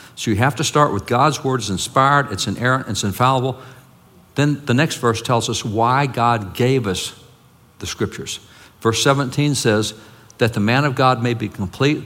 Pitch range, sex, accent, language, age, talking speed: 105-130 Hz, male, American, English, 60-79, 185 wpm